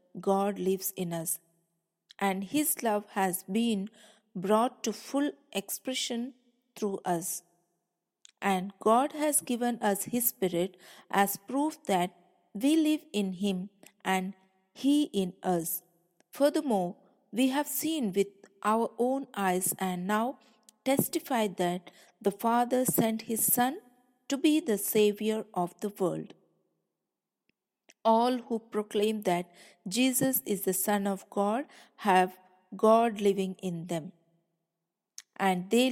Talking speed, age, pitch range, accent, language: 125 wpm, 50-69, 185-240 Hz, Indian, English